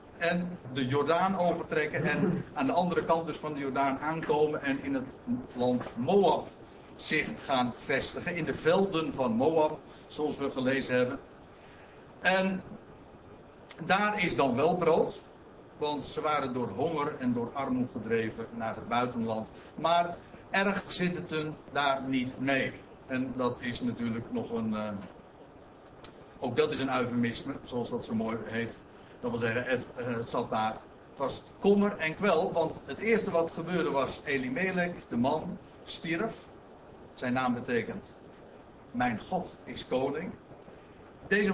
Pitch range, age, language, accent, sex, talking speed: 130-175 Hz, 60-79, Dutch, Dutch, male, 150 wpm